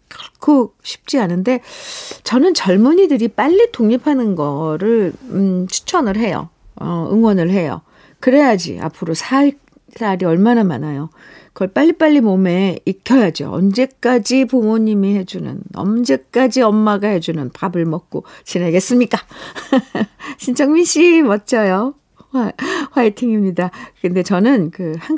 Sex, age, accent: female, 50-69, native